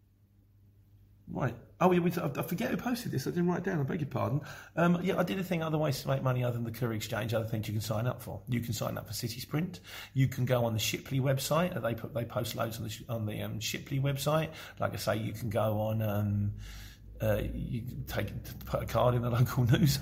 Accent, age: British, 40-59